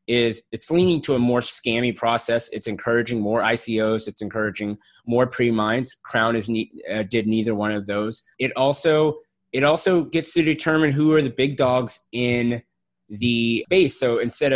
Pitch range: 110-140 Hz